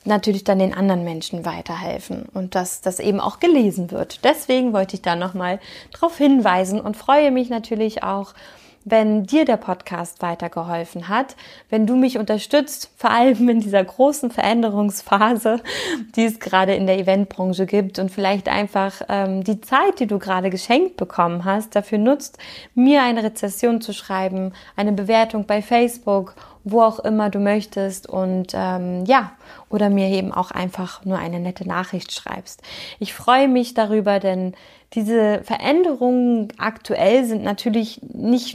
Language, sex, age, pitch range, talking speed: German, female, 20-39, 195-245 Hz, 155 wpm